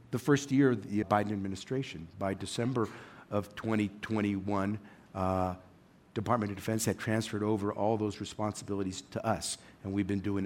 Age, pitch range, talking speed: 50-69, 100-120 Hz, 155 wpm